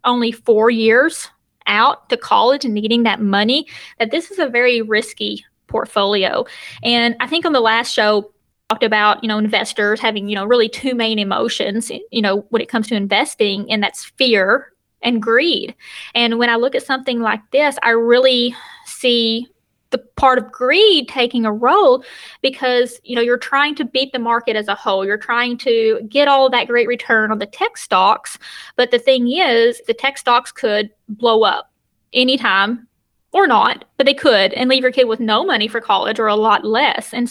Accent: American